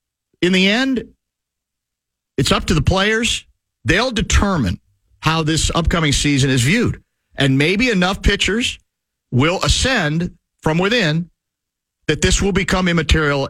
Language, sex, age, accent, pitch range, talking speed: English, male, 50-69, American, 100-155 Hz, 130 wpm